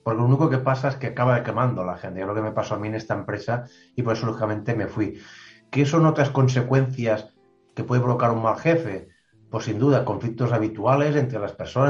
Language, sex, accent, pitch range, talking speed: Spanish, male, Spanish, 110-130 Hz, 225 wpm